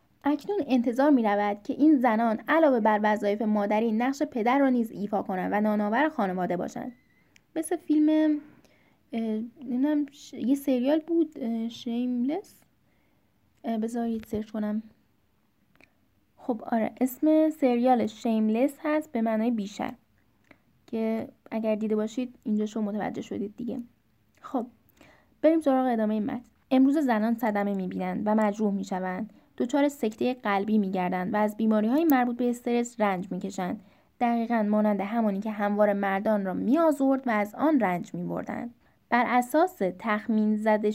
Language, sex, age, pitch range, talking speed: Persian, female, 10-29, 210-260 Hz, 140 wpm